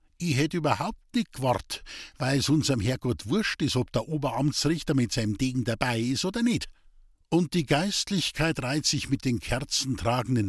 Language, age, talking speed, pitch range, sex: German, 50-69, 170 wpm, 120-165 Hz, male